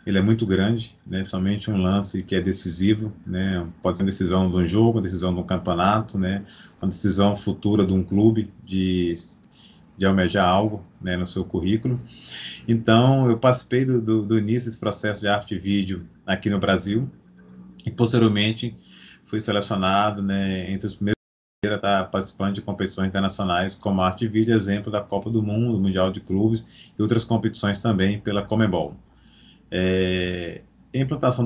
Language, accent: Portuguese, Brazilian